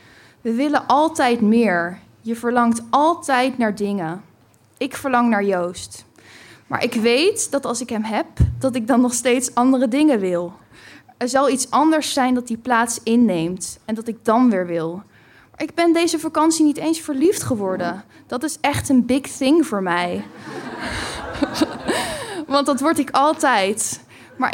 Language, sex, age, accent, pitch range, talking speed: Dutch, female, 10-29, Dutch, 215-295 Hz, 160 wpm